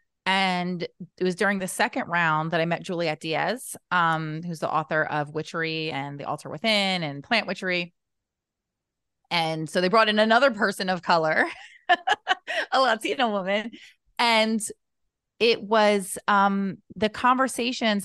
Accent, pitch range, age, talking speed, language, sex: American, 165-215 Hz, 30-49, 145 wpm, English, female